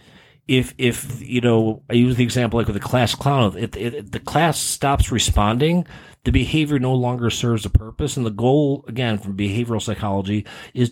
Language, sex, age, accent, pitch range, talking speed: English, male, 40-59, American, 110-140 Hz, 185 wpm